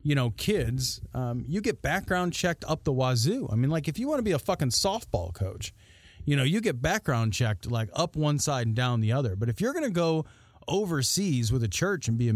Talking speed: 245 wpm